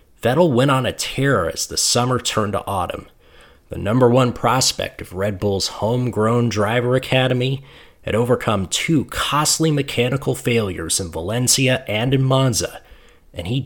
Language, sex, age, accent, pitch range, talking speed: English, male, 30-49, American, 100-130 Hz, 150 wpm